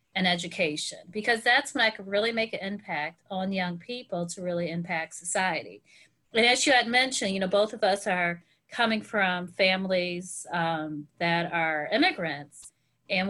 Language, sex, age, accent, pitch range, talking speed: English, female, 30-49, American, 175-220 Hz, 165 wpm